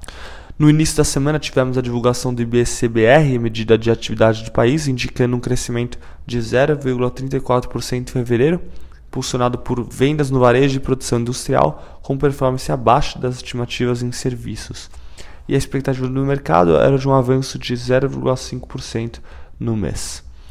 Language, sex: Portuguese, male